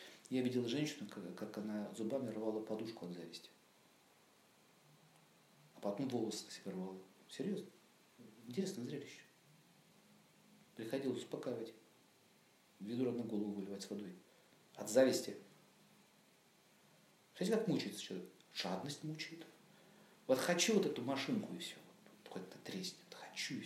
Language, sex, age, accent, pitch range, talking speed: Russian, male, 50-69, native, 110-170 Hz, 115 wpm